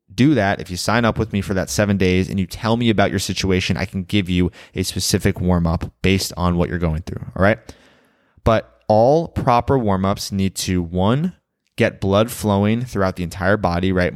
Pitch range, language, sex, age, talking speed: 90-110 Hz, English, male, 20-39, 210 wpm